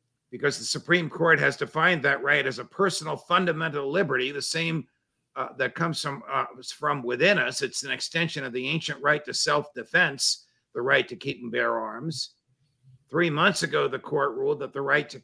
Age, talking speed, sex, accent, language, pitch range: 50-69, 190 wpm, male, American, English, 135-175 Hz